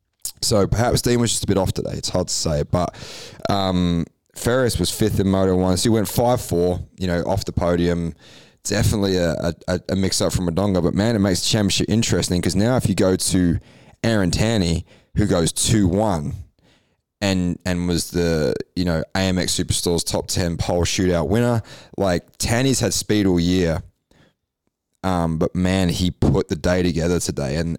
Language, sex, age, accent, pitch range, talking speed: English, male, 20-39, Australian, 85-100 Hz, 185 wpm